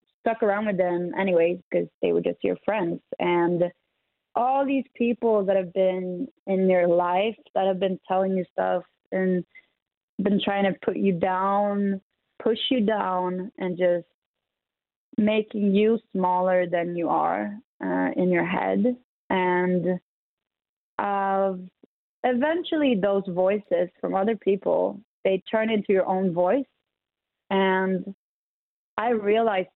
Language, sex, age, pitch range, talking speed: Danish, female, 20-39, 180-215 Hz, 135 wpm